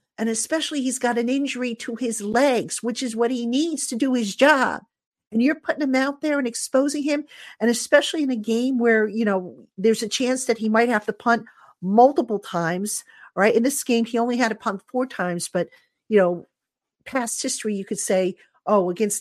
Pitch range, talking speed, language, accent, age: 195-255 Hz, 210 wpm, English, American, 50-69